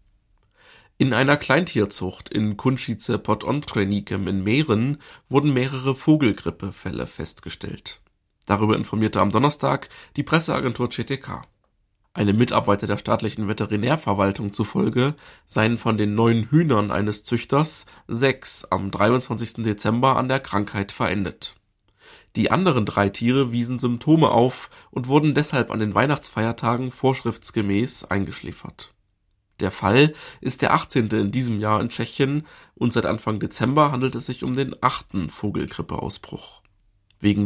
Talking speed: 125 wpm